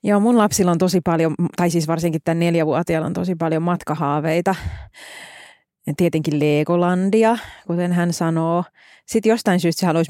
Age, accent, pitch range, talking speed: 30-49, native, 155-190 Hz, 150 wpm